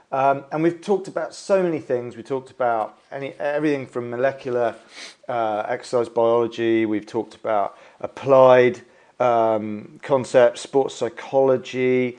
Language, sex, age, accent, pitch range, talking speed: English, male, 40-59, British, 115-150 Hz, 125 wpm